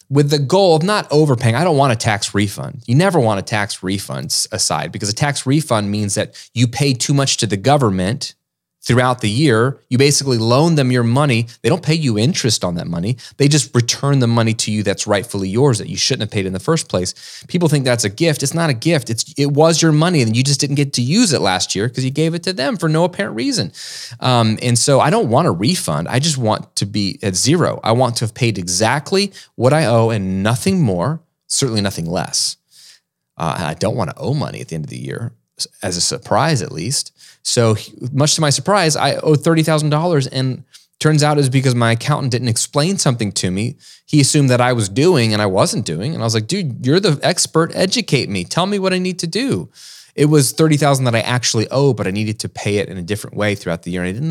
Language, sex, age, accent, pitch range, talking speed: English, male, 30-49, American, 110-150 Hz, 245 wpm